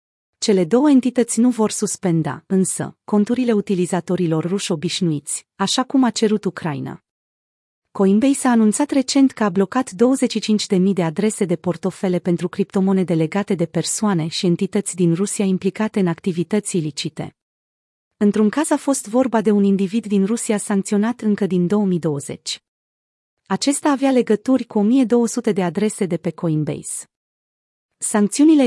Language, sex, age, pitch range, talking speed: Romanian, female, 30-49, 175-220 Hz, 140 wpm